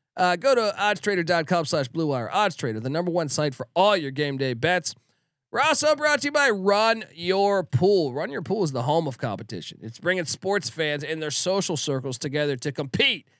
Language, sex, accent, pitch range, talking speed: English, male, American, 130-180 Hz, 205 wpm